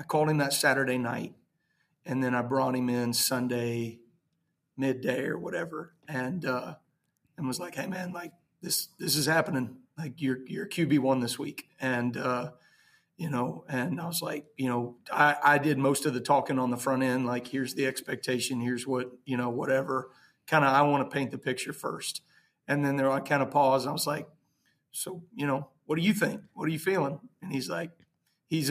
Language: English